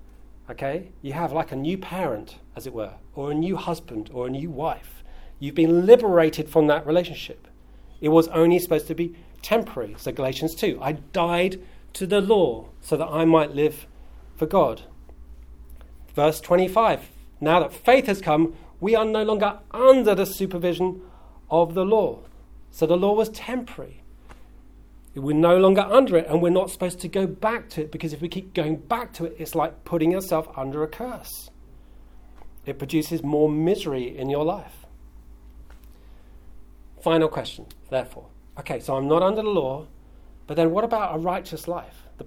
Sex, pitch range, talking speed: male, 140-190 Hz, 175 wpm